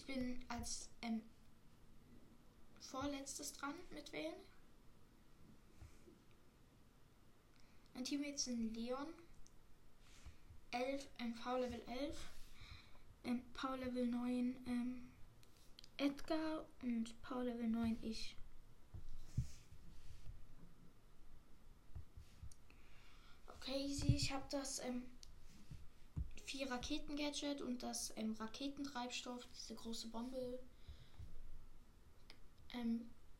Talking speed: 75 wpm